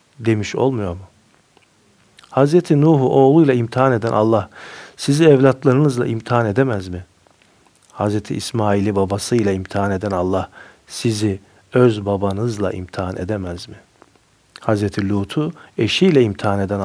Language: Turkish